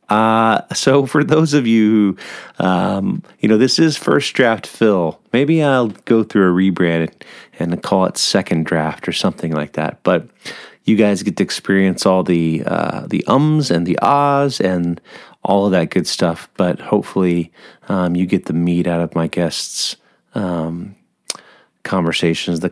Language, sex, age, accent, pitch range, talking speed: English, male, 30-49, American, 90-120 Hz, 170 wpm